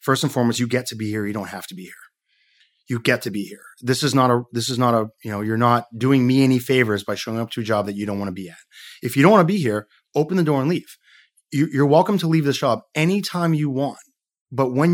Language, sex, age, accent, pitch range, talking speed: English, male, 30-49, American, 115-150 Hz, 285 wpm